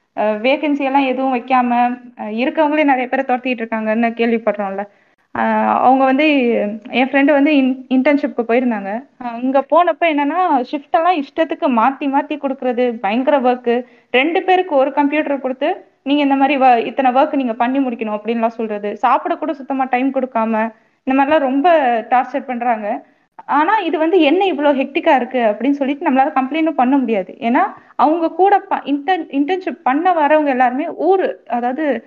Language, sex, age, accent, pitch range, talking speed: Tamil, female, 20-39, native, 240-300 Hz, 140 wpm